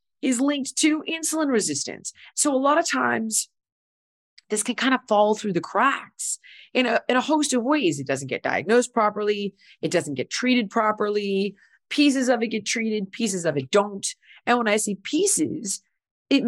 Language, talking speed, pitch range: English, 180 wpm, 165-265 Hz